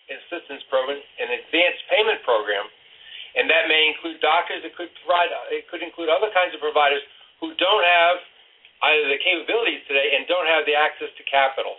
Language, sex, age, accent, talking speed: English, male, 50-69, American, 180 wpm